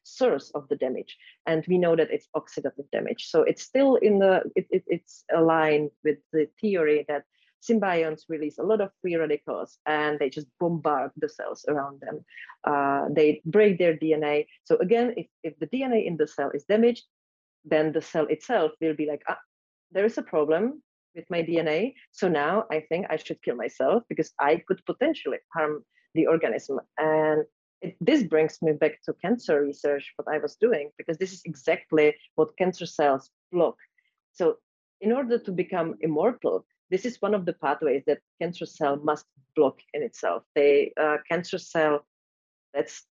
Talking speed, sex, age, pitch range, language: 175 wpm, female, 30-49, 150-200 Hz, English